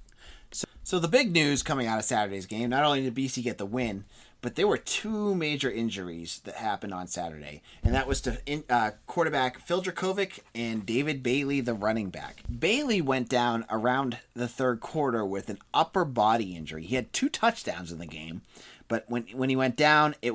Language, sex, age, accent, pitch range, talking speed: English, male, 30-49, American, 105-145 Hz, 200 wpm